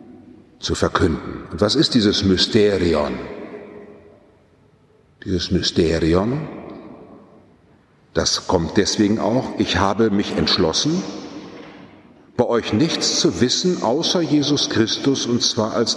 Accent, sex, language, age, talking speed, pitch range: German, male, German, 60-79, 100 wpm, 90-120 Hz